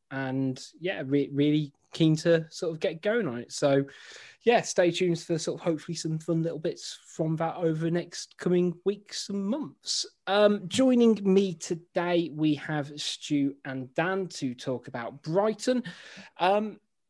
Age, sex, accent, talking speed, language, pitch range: 20-39, male, British, 165 wpm, English, 145-190 Hz